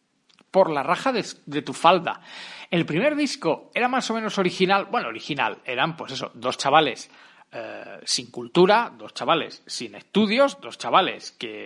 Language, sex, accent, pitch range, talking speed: Spanish, male, Spanish, 155-225 Hz, 165 wpm